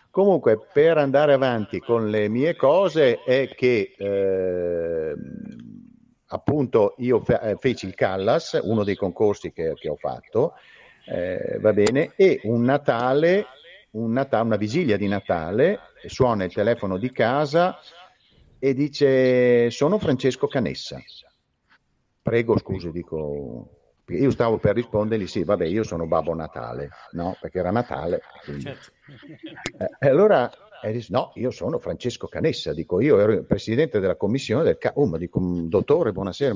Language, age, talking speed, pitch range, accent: Italian, 50-69, 135 wpm, 105-145 Hz, native